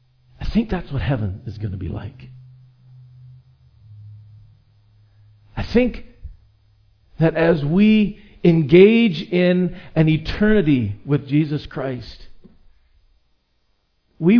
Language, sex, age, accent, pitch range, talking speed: English, male, 50-69, American, 130-215 Hz, 95 wpm